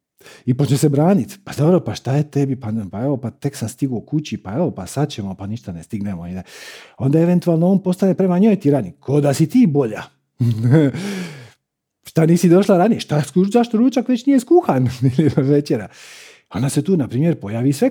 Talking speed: 190 wpm